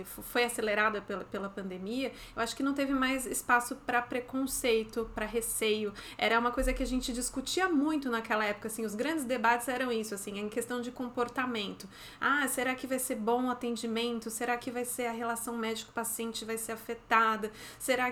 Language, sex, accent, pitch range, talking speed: Portuguese, female, Brazilian, 225-260 Hz, 185 wpm